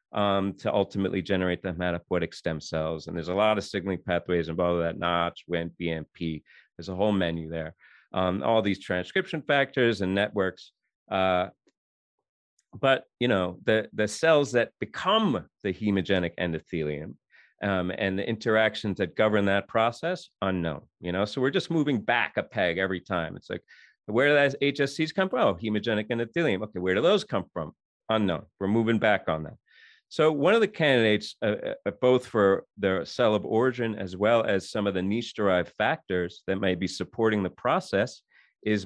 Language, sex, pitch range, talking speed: English, male, 85-115 Hz, 180 wpm